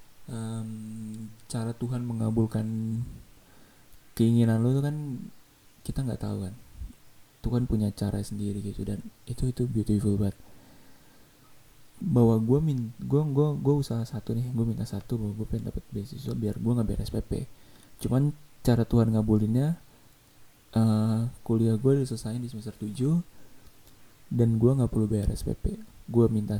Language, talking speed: Indonesian, 140 wpm